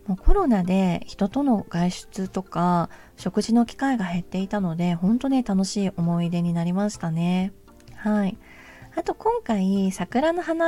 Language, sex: Japanese, female